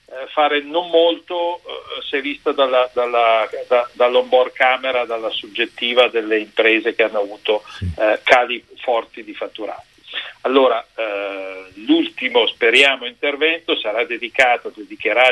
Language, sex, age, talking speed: Italian, male, 50-69, 125 wpm